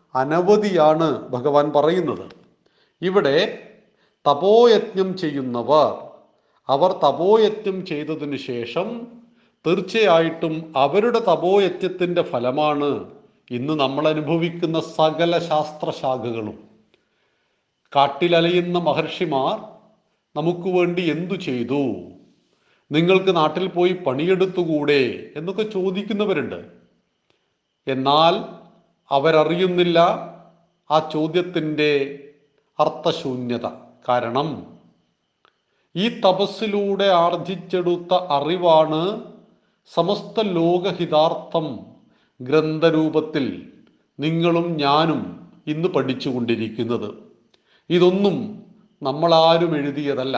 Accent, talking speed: native, 60 wpm